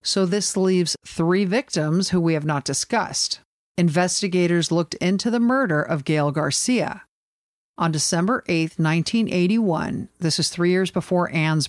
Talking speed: 145 wpm